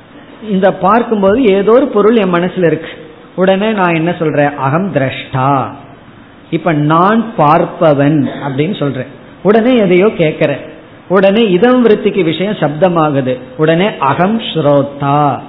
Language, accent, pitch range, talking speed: Tamil, native, 150-210 Hz, 110 wpm